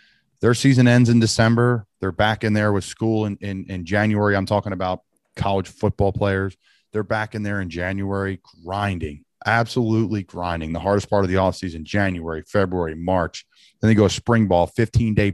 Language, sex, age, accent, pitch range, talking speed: English, male, 30-49, American, 95-110 Hz, 175 wpm